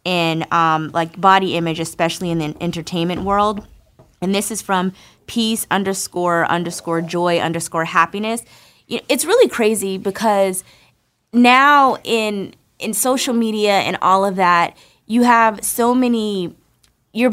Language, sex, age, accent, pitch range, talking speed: English, female, 20-39, American, 180-240 Hz, 130 wpm